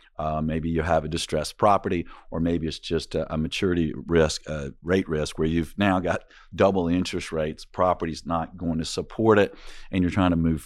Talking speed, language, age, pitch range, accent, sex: 210 wpm, English, 50-69, 80-90 Hz, American, male